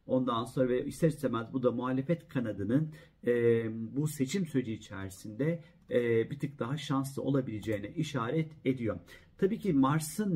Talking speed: 145 wpm